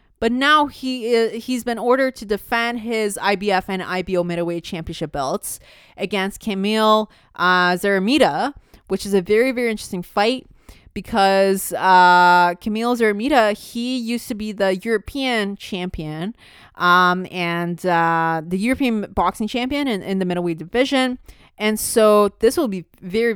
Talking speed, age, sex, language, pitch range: 145 wpm, 20-39, female, English, 195-250 Hz